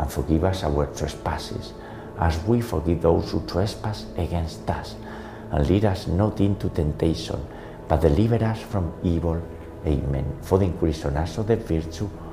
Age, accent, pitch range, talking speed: 60-79, Spanish, 75-95 Hz, 160 wpm